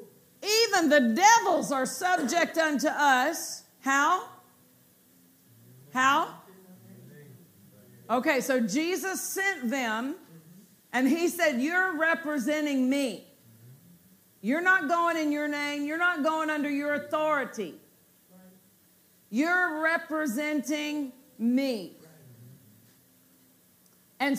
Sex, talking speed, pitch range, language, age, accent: female, 90 wpm, 225-300 Hz, English, 50-69, American